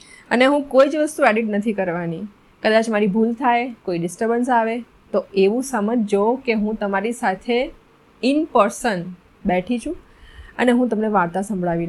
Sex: female